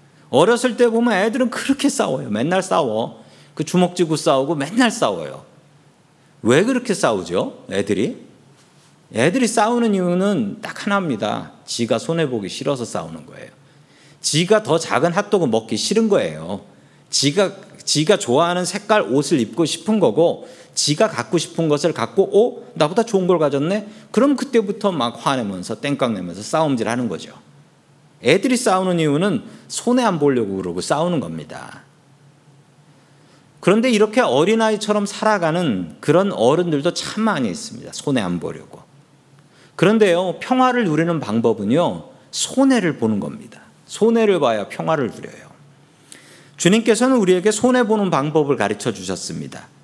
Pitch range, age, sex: 145-220 Hz, 40-59, male